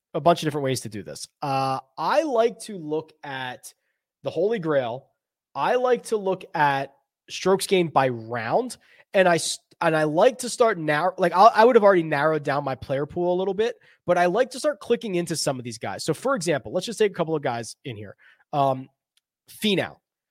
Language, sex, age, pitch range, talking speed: English, male, 20-39, 155-225 Hz, 215 wpm